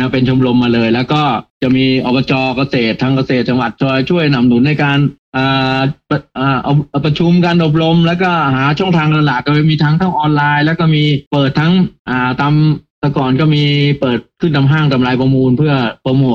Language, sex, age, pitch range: Thai, male, 30-49, 125-150 Hz